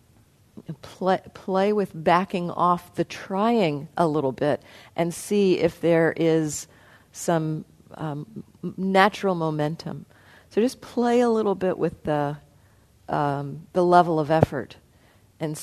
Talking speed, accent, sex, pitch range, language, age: 125 wpm, American, female, 140-175 Hz, English, 50-69